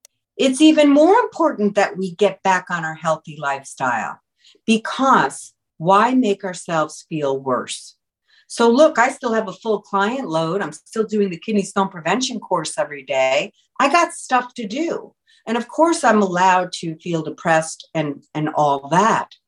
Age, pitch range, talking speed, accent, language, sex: 50-69, 180-240 Hz, 165 wpm, American, English, female